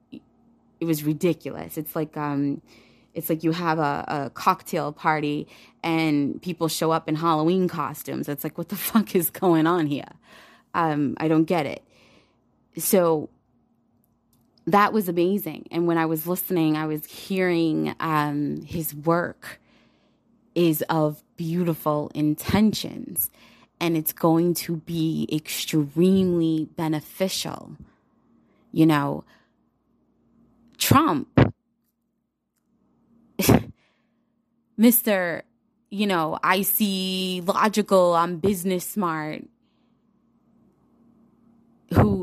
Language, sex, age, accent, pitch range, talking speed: English, female, 20-39, American, 160-205 Hz, 105 wpm